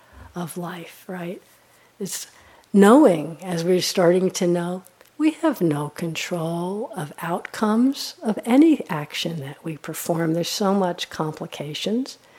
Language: English